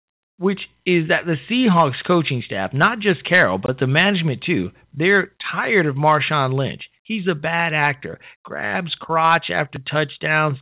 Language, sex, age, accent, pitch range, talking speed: English, male, 40-59, American, 135-180 Hz, 155 wpm